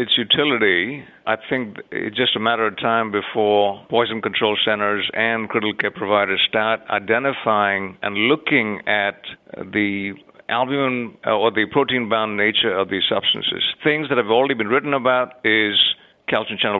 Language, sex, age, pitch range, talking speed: English, male, 50-69, 105-125 Hz, 155 wpm